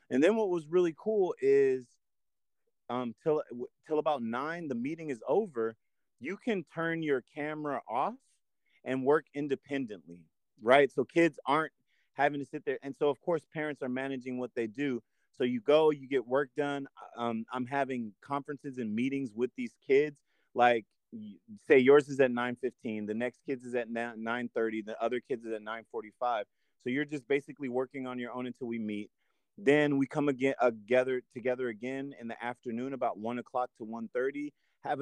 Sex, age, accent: male, 30-49, American